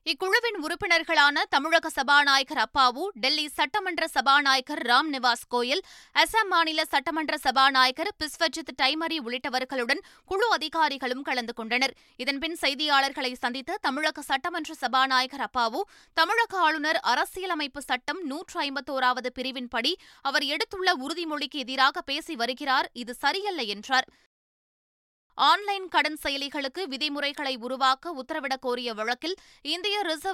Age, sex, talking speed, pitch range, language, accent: 20-39, female, 105 wpm, 260-330 Hz, Tamil, native